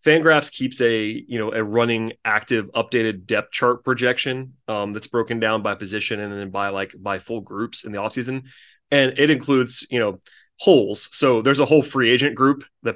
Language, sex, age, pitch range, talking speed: English, male, 30-49, 110-130 Hz, 195 wpm